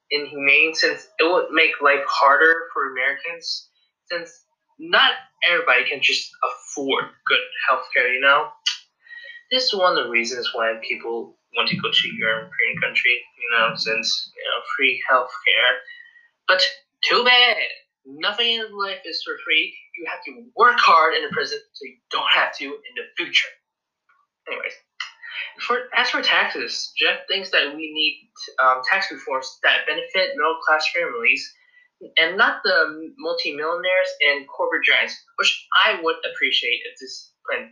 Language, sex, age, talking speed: English, male, 20-39, 155 wpm